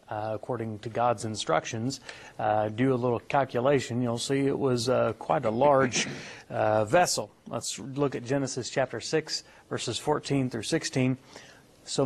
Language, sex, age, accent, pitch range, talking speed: English, male, 40-59, American, 115-150 Hz, 155 wpm